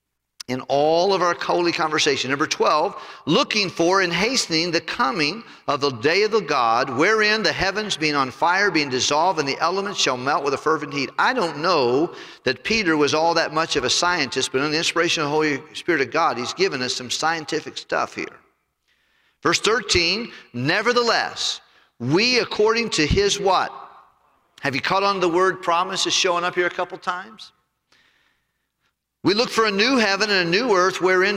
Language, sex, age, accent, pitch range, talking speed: English, male, 50-69, American, 145-200 Hz, 190 wpm